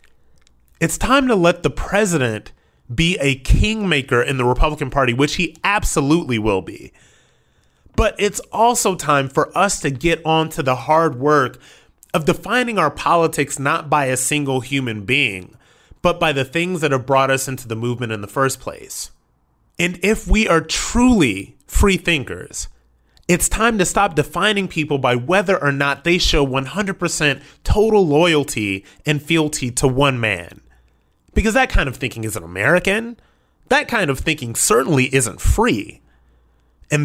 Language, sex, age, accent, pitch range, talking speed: English, male, 30-49, American, 115-170 Hz, 160 wpm